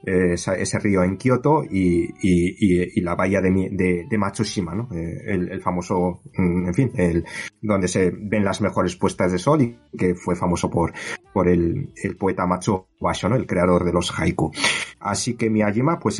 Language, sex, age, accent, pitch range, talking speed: Spanish, male, 30-49, Spanish, 90-115 Hz, 180 wpm